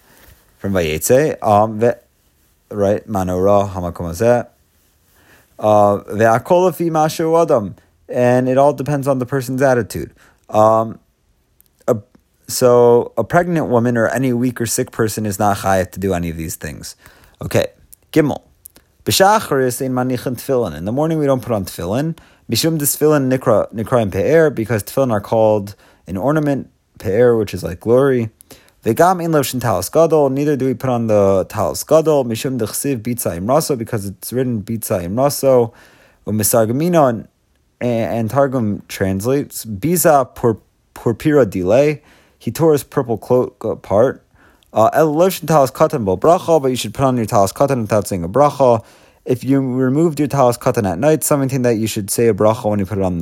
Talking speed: 140 wpm